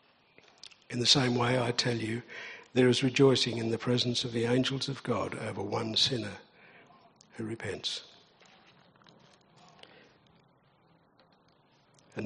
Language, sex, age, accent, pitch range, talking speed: English, male, 60-79, British, 115-125 Hz, 115 wpm